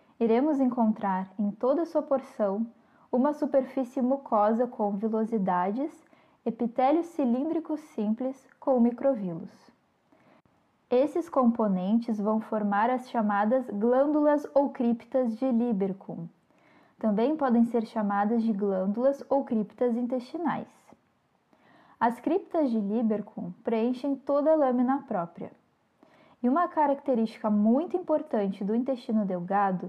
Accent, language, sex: Brazilian, Portuguese, female